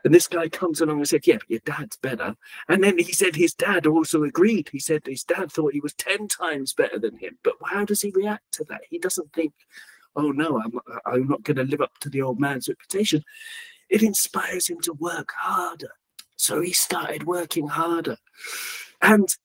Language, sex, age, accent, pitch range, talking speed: English, male, 40-59, British, 130-195 Hz, 205 wpm